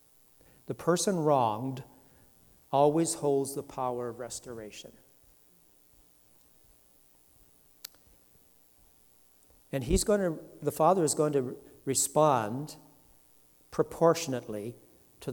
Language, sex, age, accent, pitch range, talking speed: English, male, 60-79, American, 125-160 Hz, 80 wpm